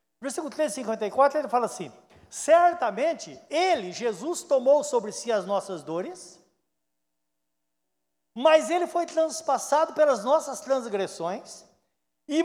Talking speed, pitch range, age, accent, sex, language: 105 wpm, 195-300 Hz, 60-79, Brazilian, male, Portuguese